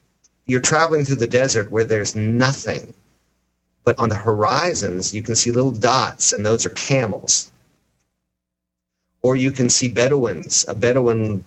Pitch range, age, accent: 75-125 Hz, 50-69, American